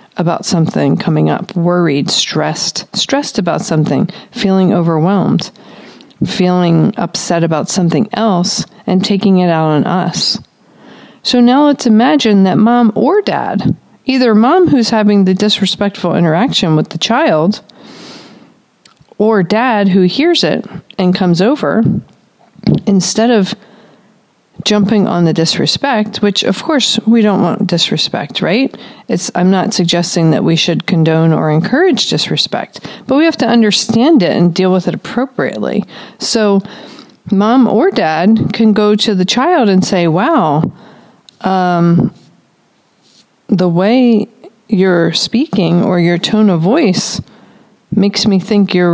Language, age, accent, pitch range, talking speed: English, 50-69, American, 180-225 Hz, 135 wpm